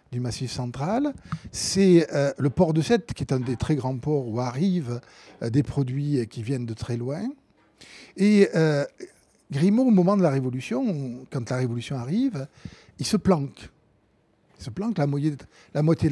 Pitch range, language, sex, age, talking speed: 130-185 Hz, French, male, 50-69, 170 wpm